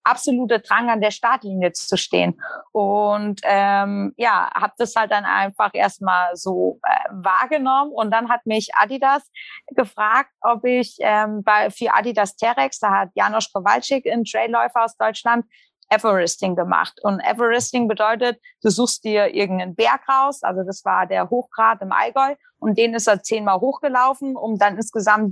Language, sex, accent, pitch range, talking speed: German, female, German, 205-245 Hz, 160 wpm